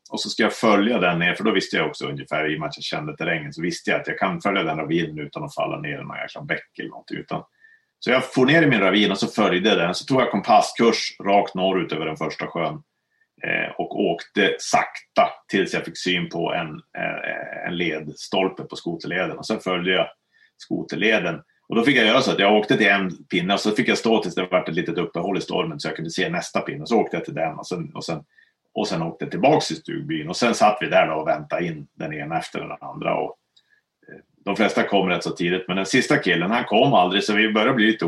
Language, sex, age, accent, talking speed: Swedish, male, 30-49, Norwegian, 250 wpm